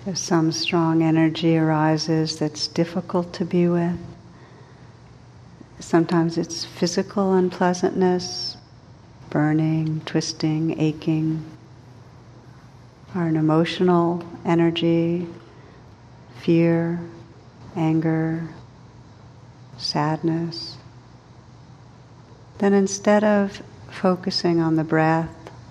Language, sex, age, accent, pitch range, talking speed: English, female, 60-79, American, 130-175 Hz, 70 wpm